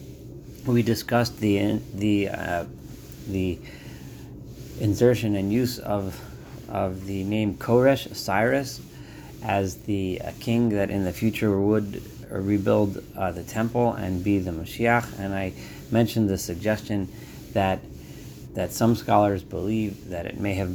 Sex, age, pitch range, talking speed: male, 30-49, 95-115 Hz, 130 wpm